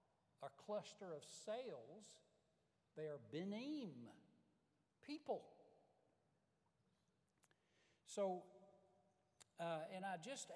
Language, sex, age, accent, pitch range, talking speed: English, male, 60-79, American, 160-215 Hz, 75 wpm